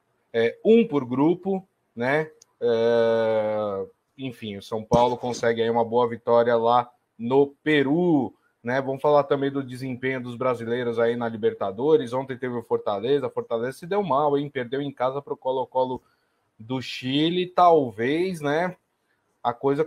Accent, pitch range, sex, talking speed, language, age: Brazilian, 130-155 Hz, male, 150 wpm, Portuguese, 20-39